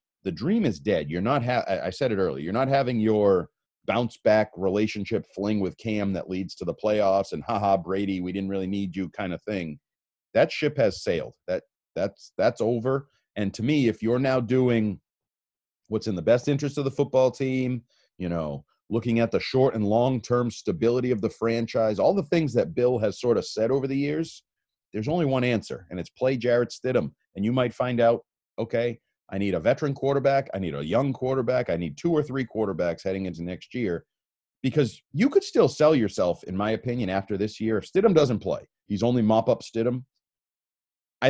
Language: English